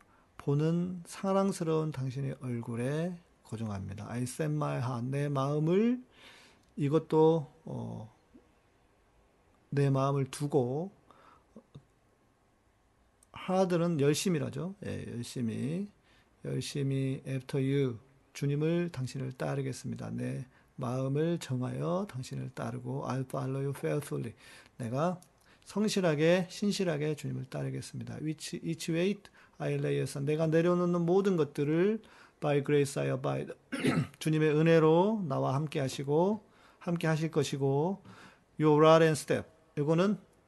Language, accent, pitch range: Korean, native, 125-165 Hz